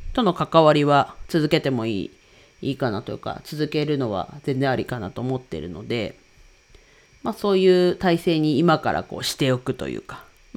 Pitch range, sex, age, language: 130-170 Hz, female, 40-59, Japanese